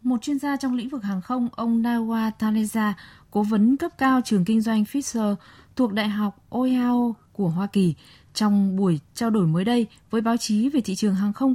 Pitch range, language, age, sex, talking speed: 195-245 Hz, Vietnamese, 20-39, female, 210 wpm